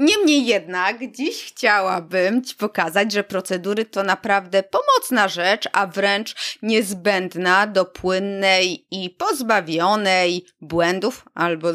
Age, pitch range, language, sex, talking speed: 20-39, 180-230 Hz, Polish, female, 105 wpm